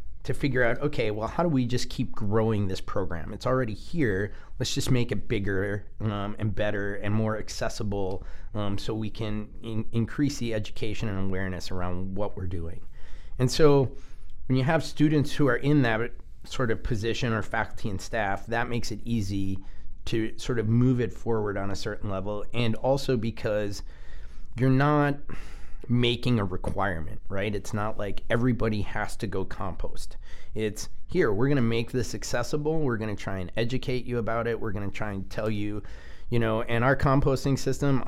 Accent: American